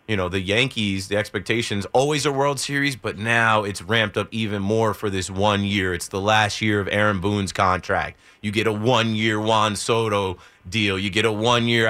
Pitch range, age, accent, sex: 105-125 Hz, 30-49, American, male